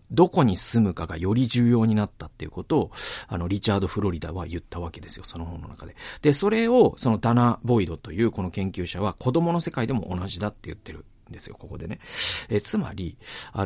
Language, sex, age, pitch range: Japanese, male, 40-59, 95-130 Hz